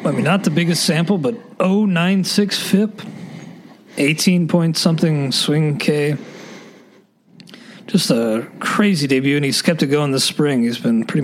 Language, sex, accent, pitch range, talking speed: English, male, American, 140-195 Hz, 150 wpm